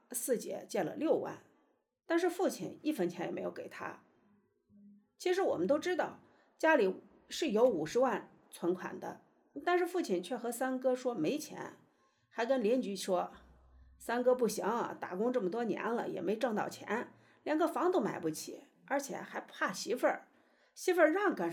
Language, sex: Chinese, female